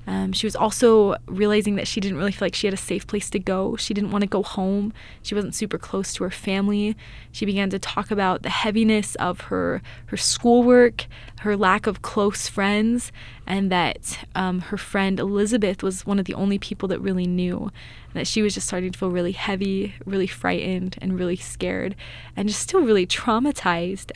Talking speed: 205 wpm